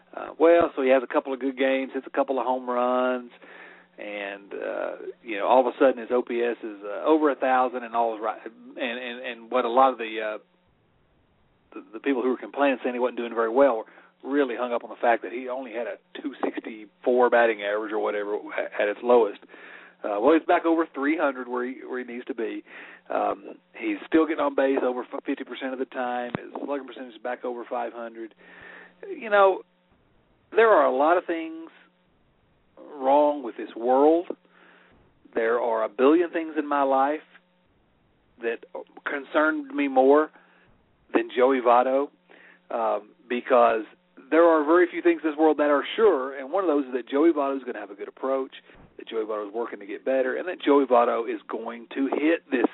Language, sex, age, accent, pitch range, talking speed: English, male, 40-59, American, 125-165 Hz, 205 wpm